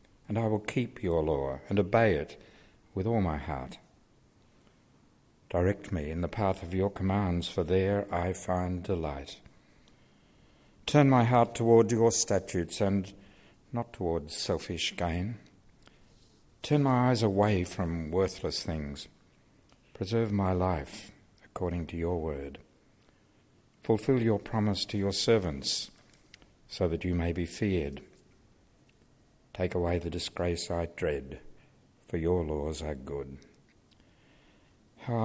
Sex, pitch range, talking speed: male, 85-110 Hz, 130 wpm